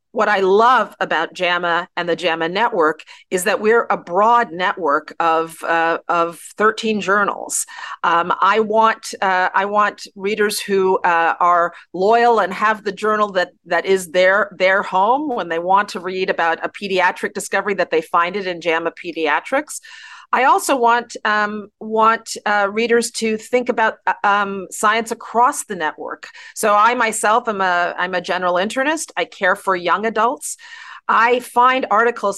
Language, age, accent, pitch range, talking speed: English, 40-59, American, 180-225 Hz, 165 wpm